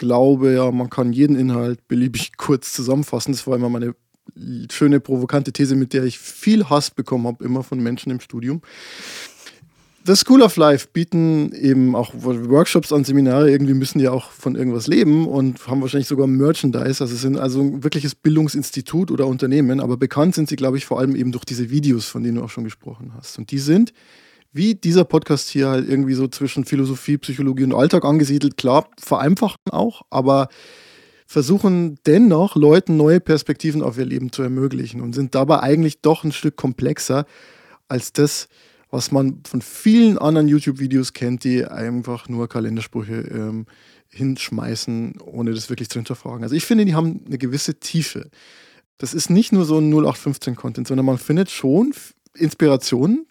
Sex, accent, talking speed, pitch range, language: male, German, 175 wpm, 125-155 Hz, German